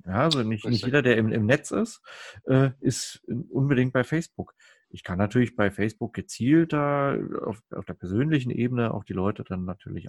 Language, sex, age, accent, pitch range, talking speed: German, male, 40-59, German, 100-130 Hz, 180 wpm